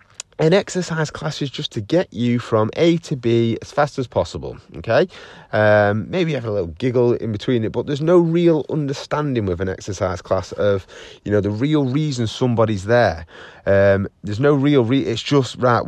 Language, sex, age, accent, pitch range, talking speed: English, male, 30-49, British, 100-140 Hz, 195 wpm